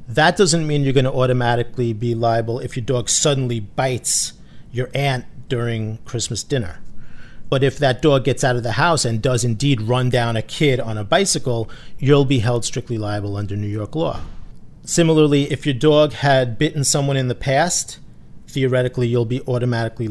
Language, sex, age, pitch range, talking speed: English, male, 40-59, 115-140 Hz, 180 wpm